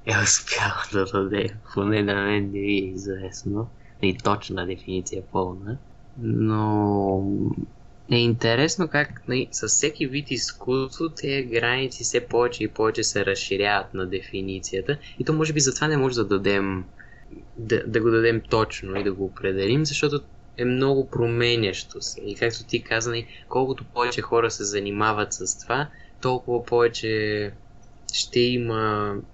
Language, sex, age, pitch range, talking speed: Bulgarian, male, 20-39, 100-120 Hz, 145 wpm